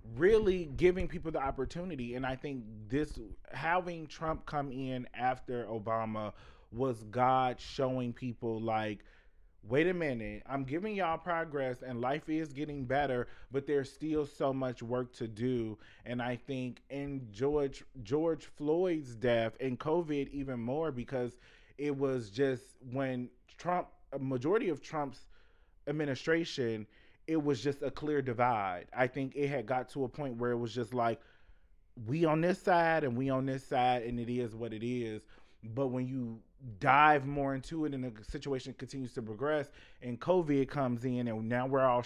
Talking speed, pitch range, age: 170 wpm, 120-145 Hz, 20-39